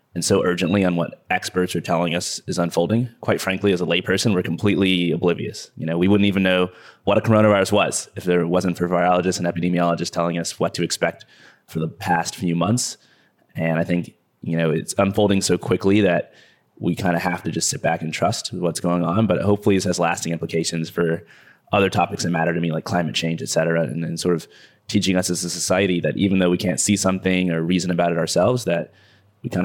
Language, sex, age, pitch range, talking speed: English, male, 20-39, 85-100 Hz, 225 wpm